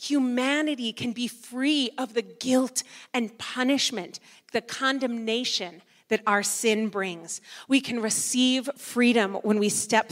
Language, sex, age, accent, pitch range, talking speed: English, female, 30-49, American, 205-255 Hz, 130 wpm